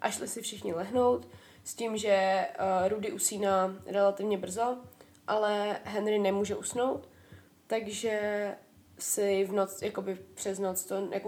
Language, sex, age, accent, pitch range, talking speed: Czech, female, 20-39, native, 185-205 Hz, 130 wpm